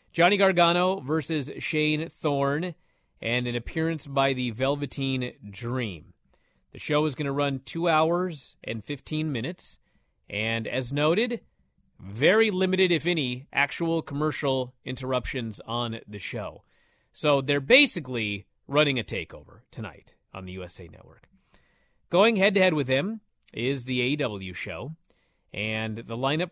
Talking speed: 130 wpm